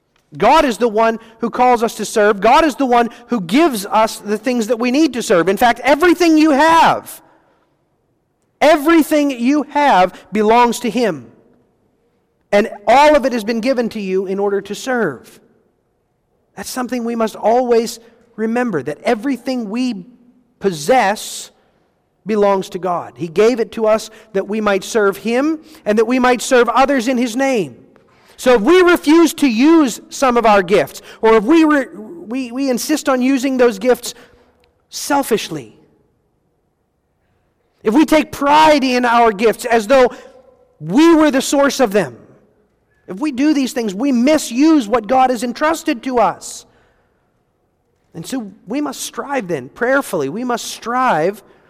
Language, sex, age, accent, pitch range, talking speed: English, male, 40-59, American, 215-270 Hz, 160 wpm